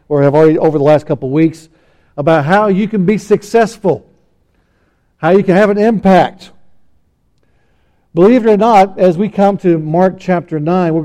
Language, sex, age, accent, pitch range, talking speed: English, male, 60-79, American, 150-190 Hz, 175 wpm